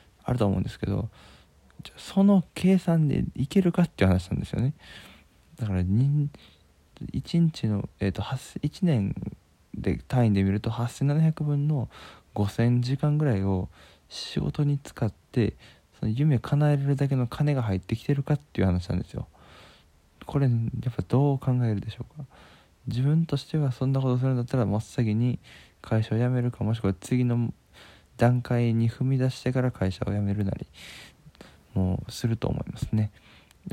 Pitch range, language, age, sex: 100-135 Hz, Japanese, 20-39, male